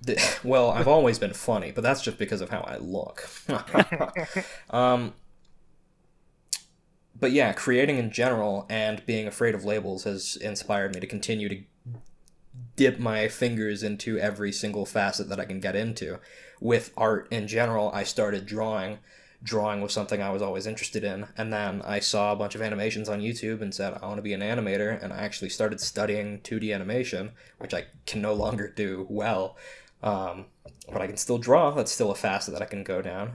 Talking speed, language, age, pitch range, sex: 185 wpm, English, 20-39, 105-115 Hz, male